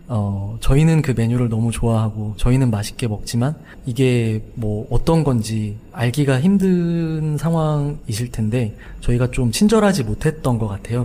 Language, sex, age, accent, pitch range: Korean, male, 20-39, native, 110-140 Hz